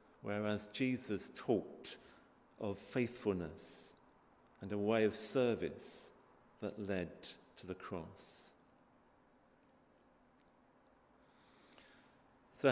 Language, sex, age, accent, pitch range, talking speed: English, male, 50-69, British, 100-125 Hz, 75 wpm